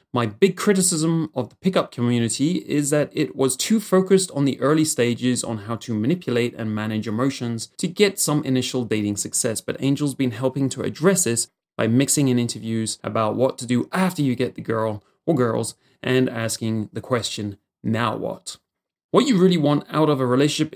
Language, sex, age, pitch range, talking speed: English, male, 30-49, 115-140 Hz, 190 wpm